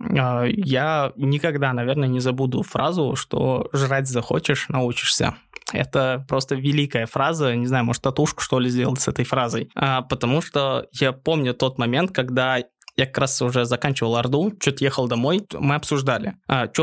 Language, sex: Russian, male